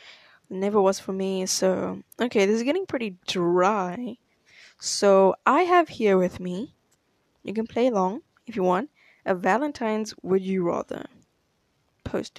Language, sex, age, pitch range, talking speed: English, female, 10-29, 195-270 Hz, 145 wpm